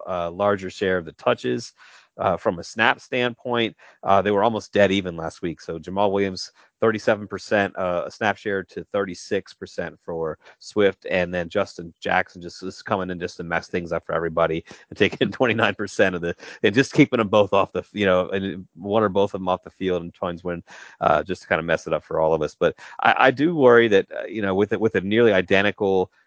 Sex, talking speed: male, 225 wpm